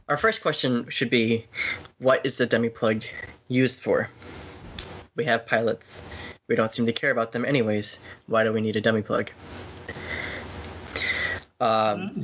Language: English